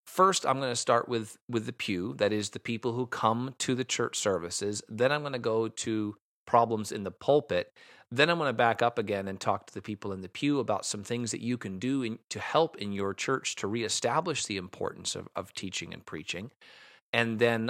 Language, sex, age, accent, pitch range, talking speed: English, male, 40-59, American, 100-125 Hz, 230 wpm